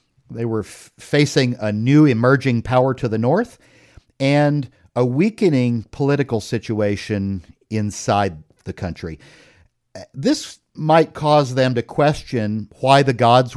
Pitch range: 110-145 Hz